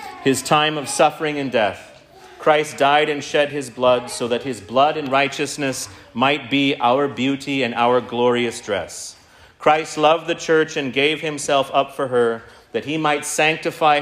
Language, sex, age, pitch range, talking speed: English, male, 40-59, 125-160 Hz, 170 wpm